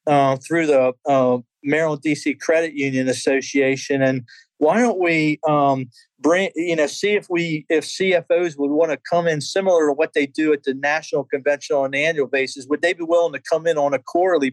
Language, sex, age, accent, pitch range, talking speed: English, male, 40-59, American, 140-165 Hz, 200 wpm